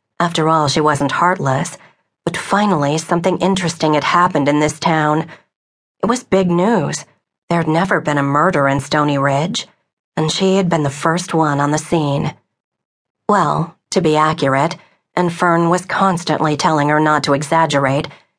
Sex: female